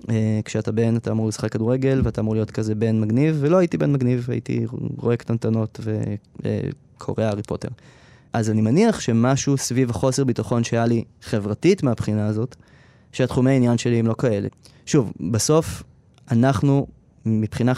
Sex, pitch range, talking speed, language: male, 115-140 Hz, 155 wpm, Hebrew